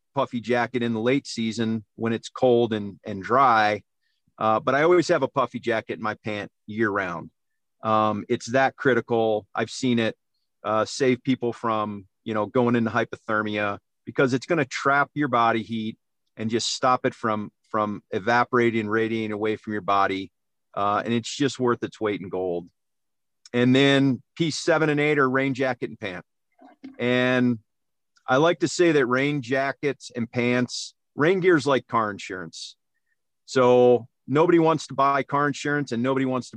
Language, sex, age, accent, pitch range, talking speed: English, male, 40-59, American, 110-135 Hz, 175 wpm